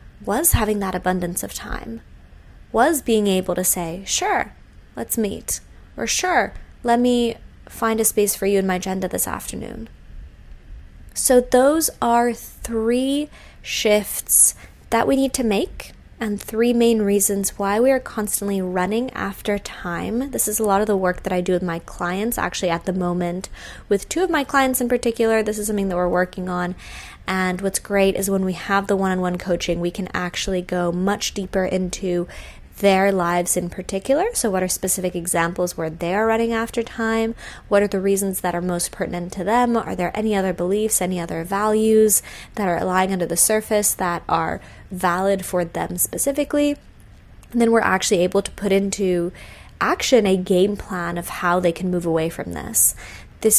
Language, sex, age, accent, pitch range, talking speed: English, female, 20-39, American, 180-225 Hz, 185 wpm